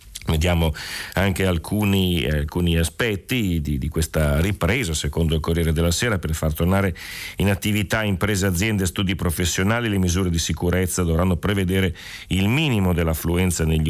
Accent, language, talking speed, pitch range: native, Italian, 145 wpm, 80-95 Hz